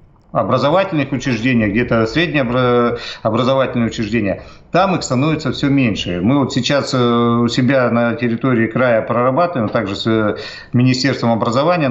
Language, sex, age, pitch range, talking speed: Russian, male, 50-69, 115-140 Hz, 120 wpm